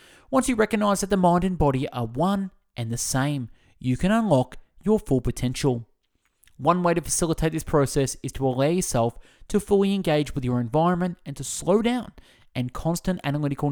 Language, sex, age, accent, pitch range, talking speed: English, male, 20-39, Australian, 125-175 Hz, 185 wpm